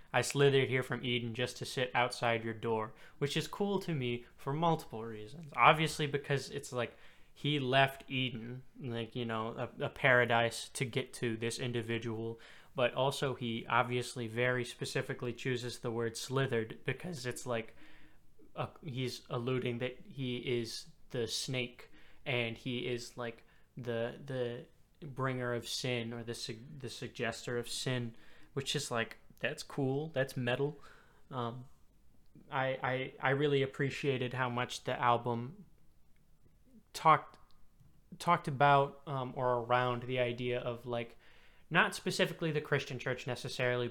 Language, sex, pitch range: English, male, 120-135 Hz